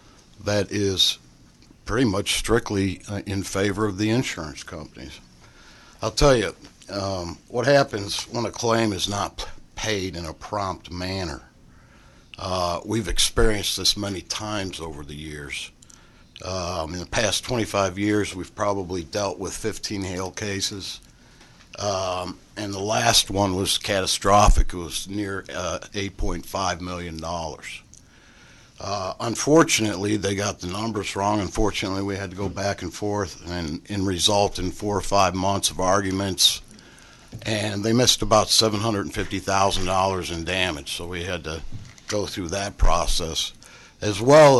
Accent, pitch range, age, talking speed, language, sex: American, 90-105 Hz, 60-79, 140 wpm, English, male